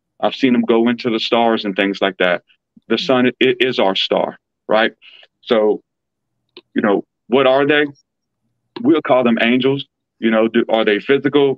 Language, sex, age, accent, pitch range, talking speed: English, male, 40-59, American, 110-130 Hz, 170 wpm